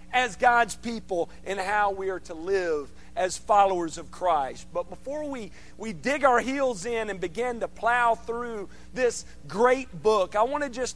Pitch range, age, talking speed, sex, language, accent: 200-260 Hz, 40-59, 180 wpm, male, English, American